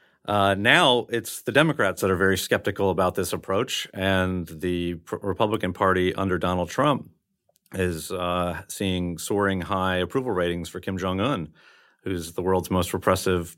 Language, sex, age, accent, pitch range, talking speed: English, male, 40-59, American, 90-105 Hz, 155 wpm